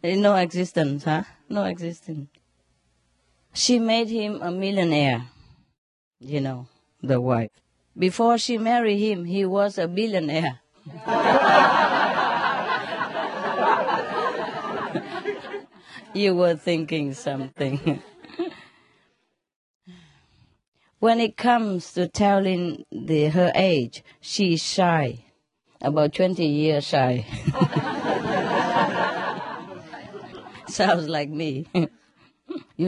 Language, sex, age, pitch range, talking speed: English, female, 40-59, 140-205 Hz, 80 wpm